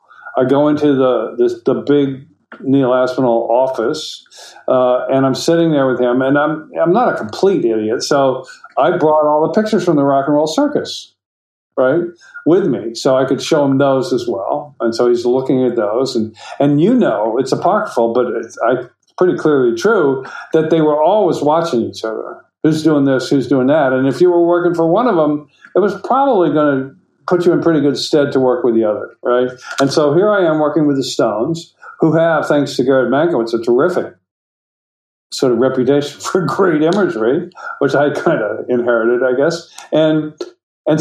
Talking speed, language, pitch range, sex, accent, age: 200 wpm, English, 130-170 Hz, male, American, 50-69